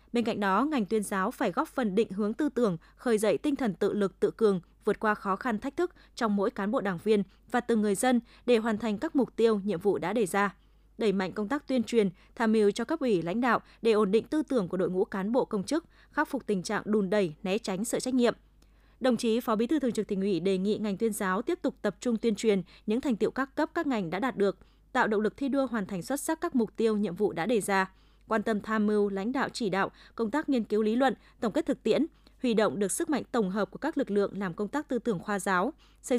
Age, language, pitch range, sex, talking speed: 20-39, Vietnamese, 200-250 Hz, female, 280 wpm